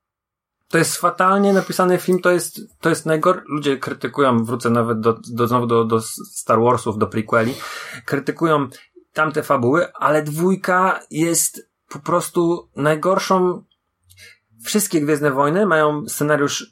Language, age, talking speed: Polish, 30-49, 130 wpm